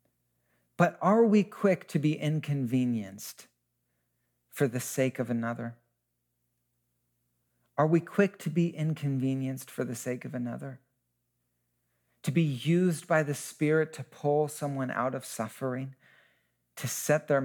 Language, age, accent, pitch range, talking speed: English, 40-59, American, 115-160 Hz, 130 wpm